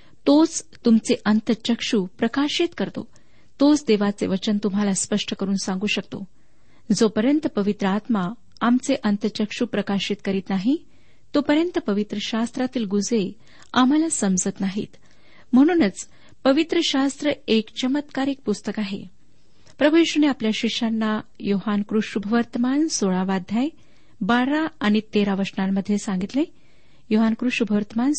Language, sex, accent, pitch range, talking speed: Marathi, female, native, 205-265 Hz, 95 wpm